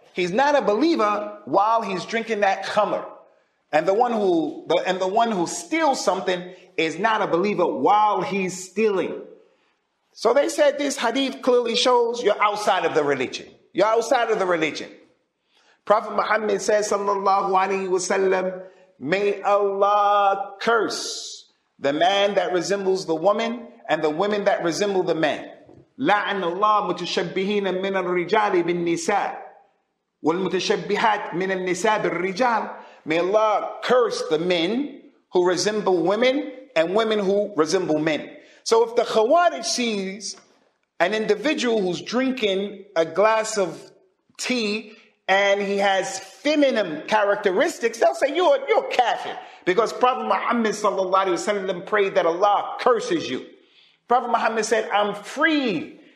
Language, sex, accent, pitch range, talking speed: English, male, American, 190-240 Hz, 130 wpm